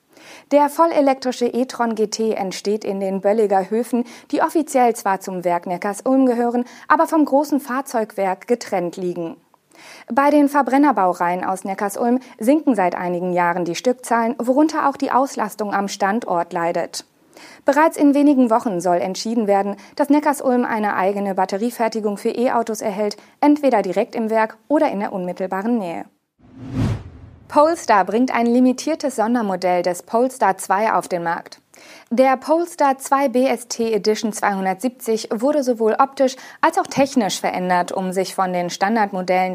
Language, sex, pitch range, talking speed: German, female, 190-265 Hz, 140 wpm